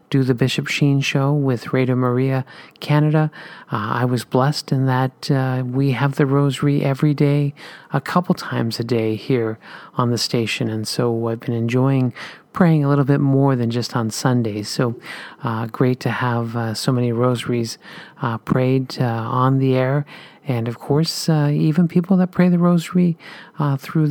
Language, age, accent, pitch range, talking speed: English, 40-59, American, 125-150 Hz, 180 wpm